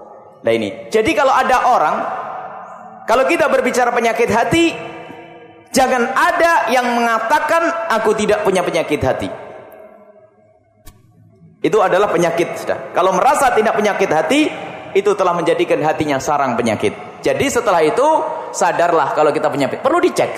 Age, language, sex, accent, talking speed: 30-49, English, male, Indonesian, 130 wpm